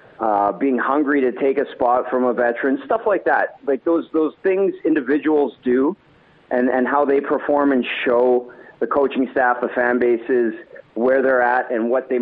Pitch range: 120-145 Hz